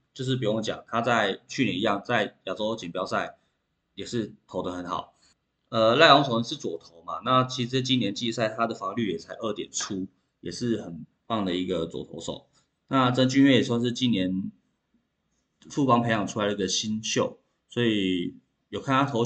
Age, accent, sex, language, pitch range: 20-39, native, male, Chinese, 100-130 Hz